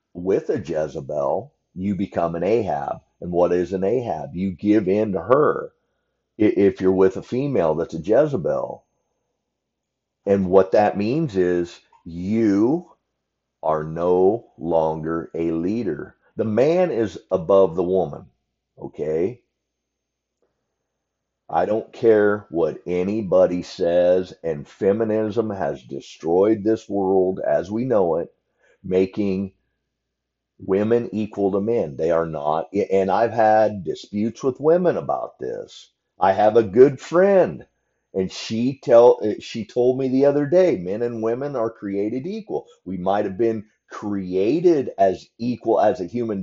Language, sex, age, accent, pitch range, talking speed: English, male, 50-69, American, 95-120 Hz, 135 wpm